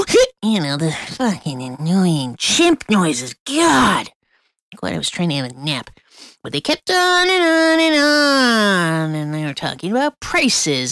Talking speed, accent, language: 170 wpm, American, English